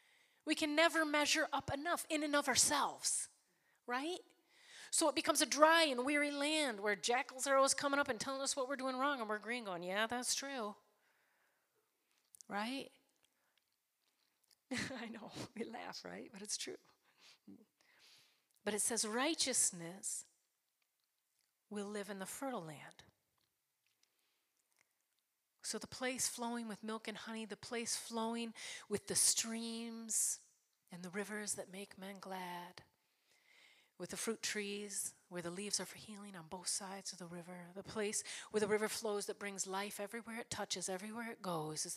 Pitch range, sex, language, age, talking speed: 195-270 Hz, female, English, 40-59, 160 wpm